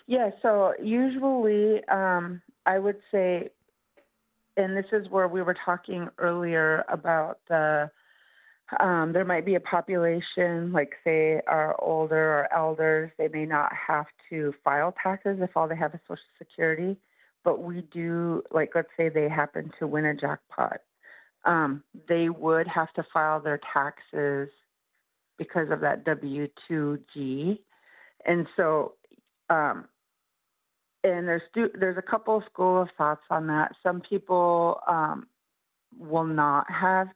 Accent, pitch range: American, 155-185 Hz